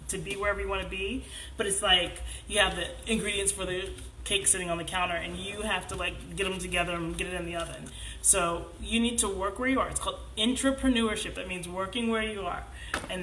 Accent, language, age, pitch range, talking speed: American, English, 20-39, 180-245 Hz, 240 wpm